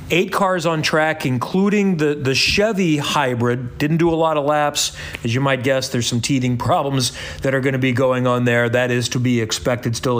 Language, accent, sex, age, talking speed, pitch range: English, American, male, 40-59, 220 wpm, 125-155 Hz